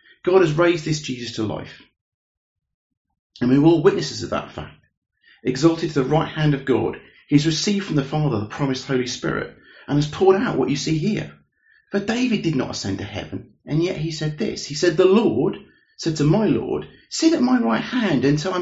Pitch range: 130-190 Hz